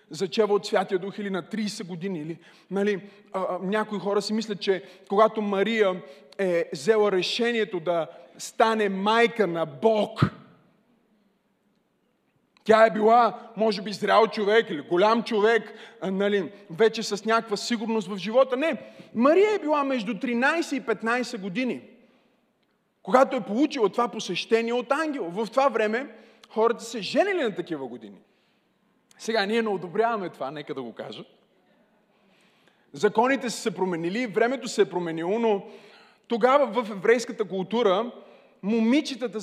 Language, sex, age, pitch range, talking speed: Bulgarian, male, 20-39, 200-235 Hz, 140 wpm